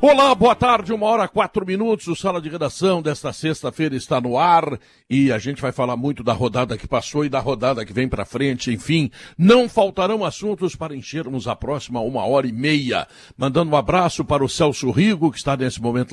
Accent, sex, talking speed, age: Brazilian, male, 210 wpm, 60-79